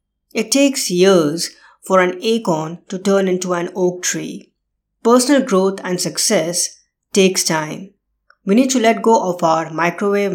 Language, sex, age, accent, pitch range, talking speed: English, female, 20-39, Indian, 170-210 Hz, 150 wpm